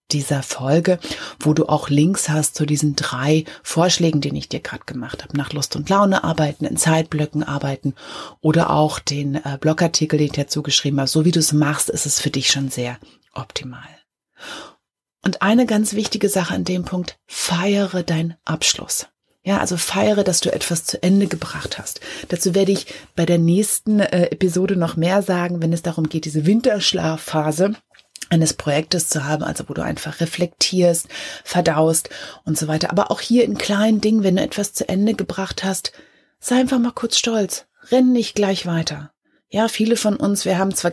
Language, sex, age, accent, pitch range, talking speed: German, female, 30-49, German, 155-195 Hz, 185 wpm